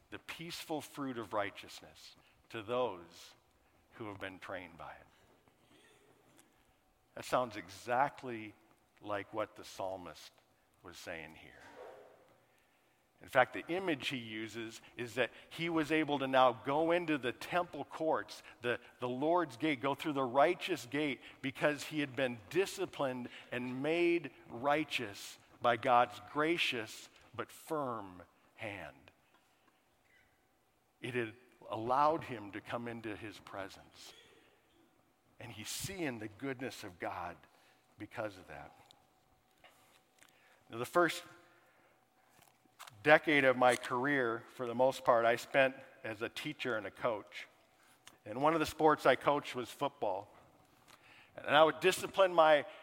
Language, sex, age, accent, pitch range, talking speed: English, male, 50-69, American, 125-155 Hz, 130 wpm